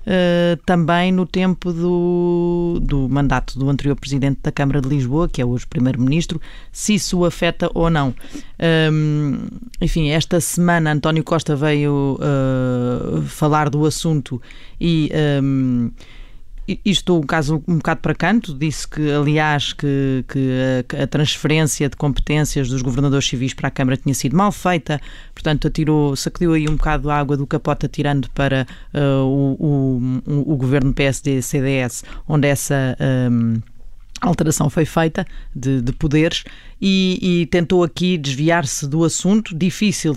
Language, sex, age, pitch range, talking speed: Portuguese, female, 20-39, 135-170 Hz, 150 wpm